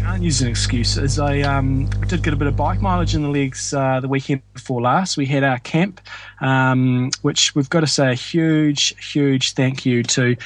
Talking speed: 225 wpm